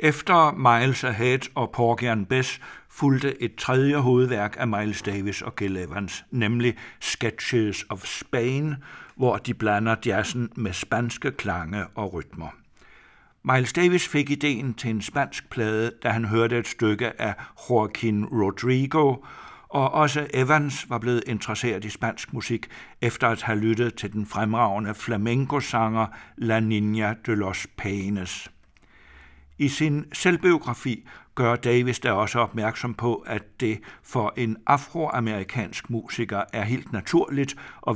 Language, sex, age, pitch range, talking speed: Danish, male, 60-79, 105-125 Hz, 135 wpm